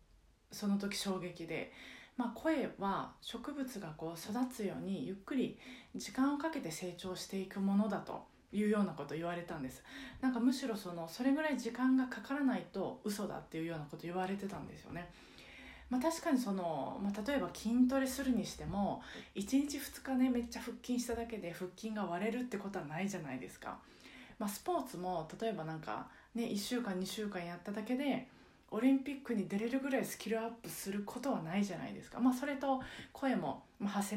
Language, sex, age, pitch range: Japanese, female, 20-39, 185-245 Hz